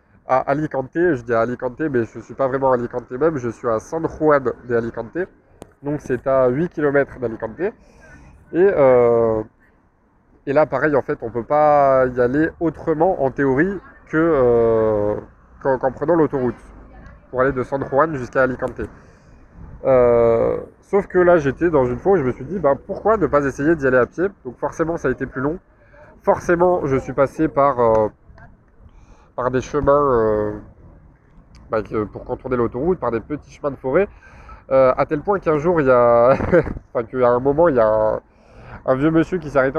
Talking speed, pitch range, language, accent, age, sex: 190 wpm, 120-150 Hz, French, French, 20-39, male